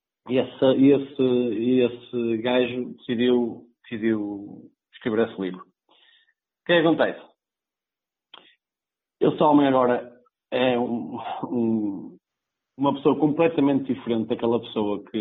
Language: Portuguese